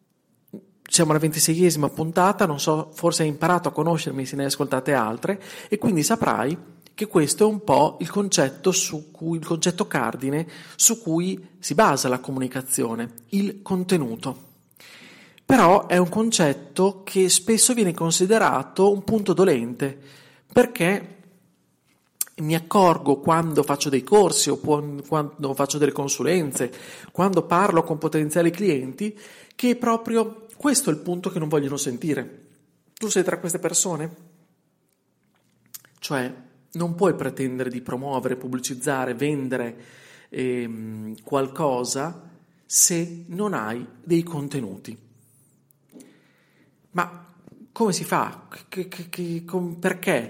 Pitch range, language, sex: 140-185 Hz, Italian, male